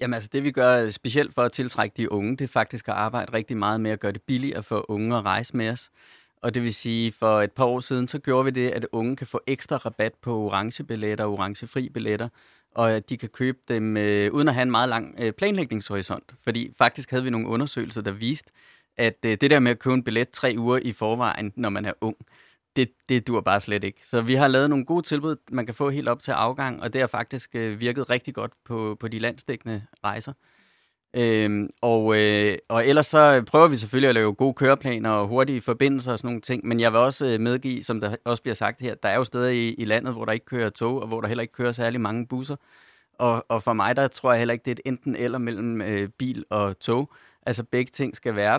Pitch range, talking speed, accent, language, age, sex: 110-130 Hz, 250 wpm, native, Danish, 30-49, male